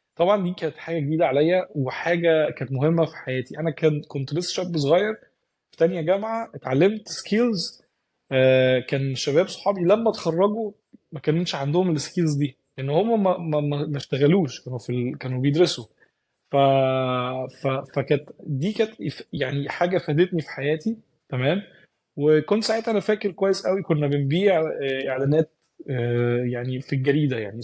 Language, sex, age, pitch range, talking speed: Arabic, male, 20-39, 135-170 Hz, 140 wpm